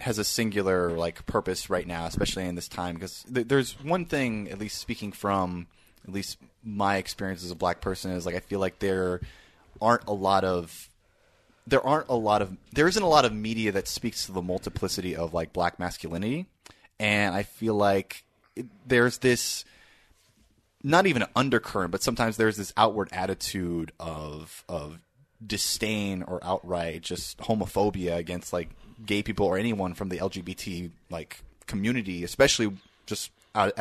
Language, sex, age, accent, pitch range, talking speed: English, male, 30-49, American, 90-110 Hz, 165 wpm